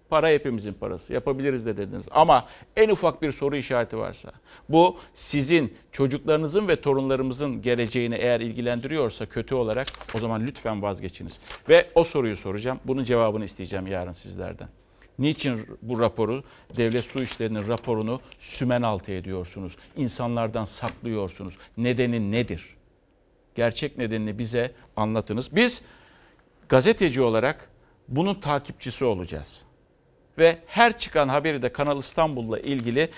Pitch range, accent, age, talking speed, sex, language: 115-160 Hz, native, 60-79, 125 wpm, male, Turkish